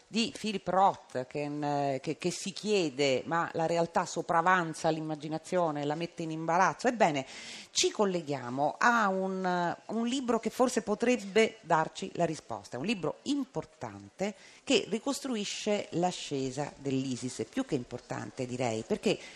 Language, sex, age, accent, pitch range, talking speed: Italian, female, 40-59, native, 160-225 Hz, 130 wpm